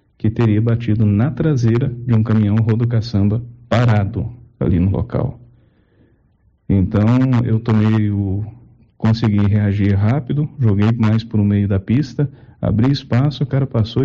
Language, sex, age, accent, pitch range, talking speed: Portuguese, male, 50-69, Brazilian, 105-125 Hz, 130 wpm